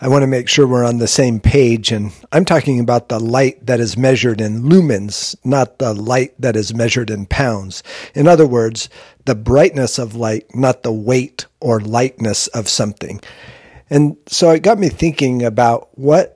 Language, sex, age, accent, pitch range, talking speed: English, male, 50-69, American, 115-145 Hz, 185 wpm